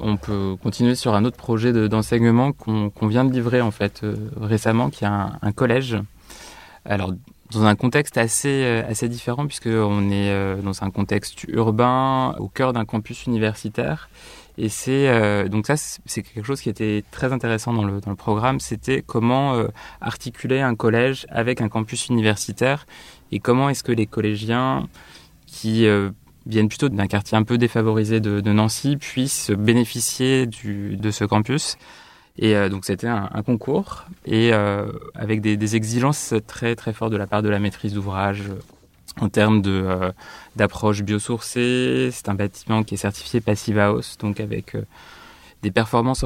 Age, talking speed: 20-39, 180 wpm